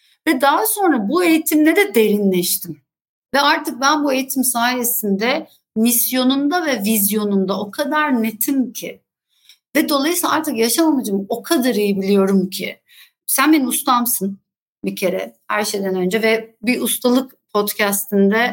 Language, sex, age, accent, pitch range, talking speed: Turkish, female, 60-79, native, 220-290 Hz, 135 wpm